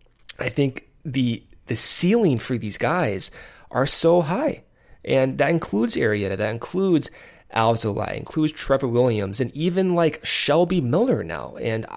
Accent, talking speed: American, 140 wpm